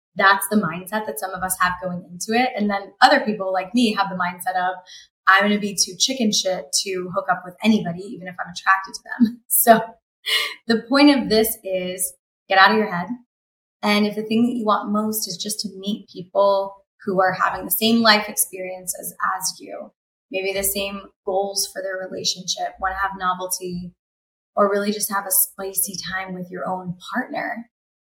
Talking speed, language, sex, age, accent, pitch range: 200 wpm, English, female, 20-39, American, 185-225 Hz